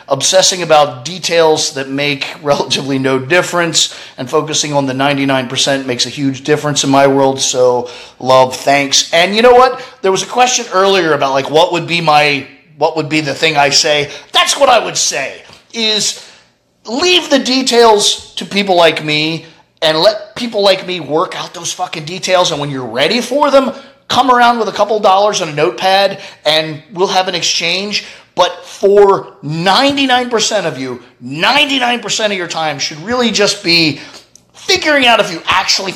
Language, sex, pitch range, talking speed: English, male, 145-200 Hz, 175 wpm